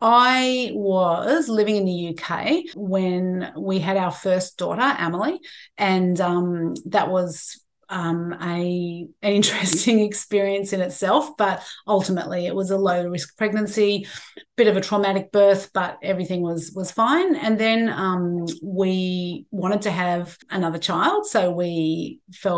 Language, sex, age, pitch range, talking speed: English, female, 30-49, 180-215 Hz, 140 wpm